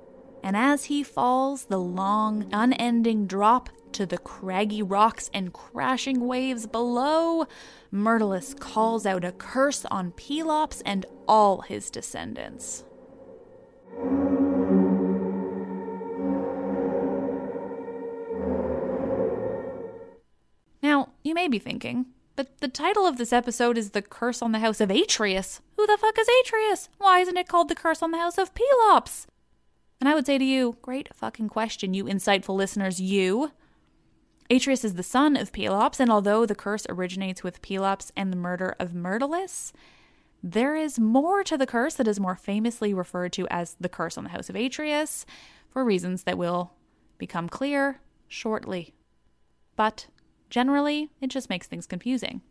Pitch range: 195-280 Hz